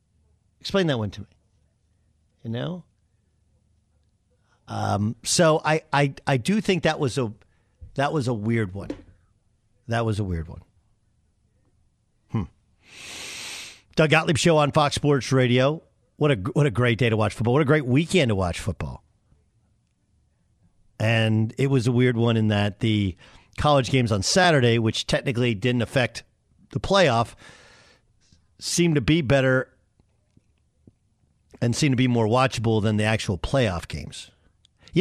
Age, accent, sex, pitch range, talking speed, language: 50-69, American, male, 105-150 Hz, 145 wpm, English